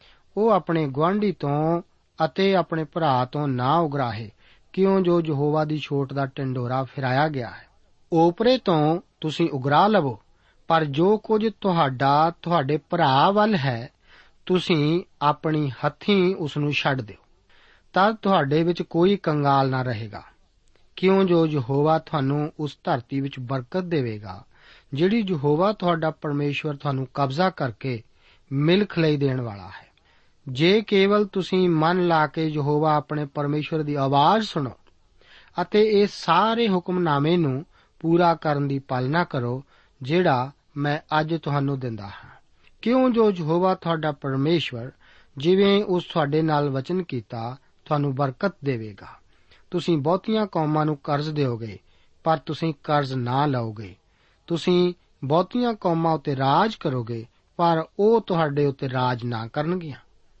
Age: 40-59